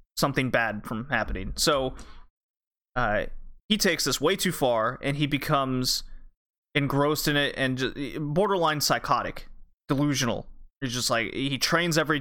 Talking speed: 145 wpm